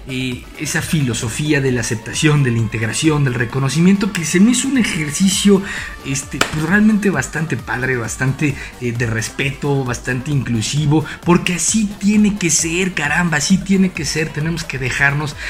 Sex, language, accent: male, Spanish, Mexican